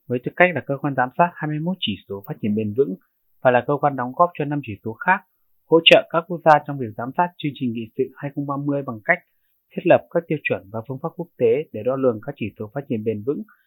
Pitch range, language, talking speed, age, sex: 115-150 Hz, Vietnamese, 270 wpm, 20-39, male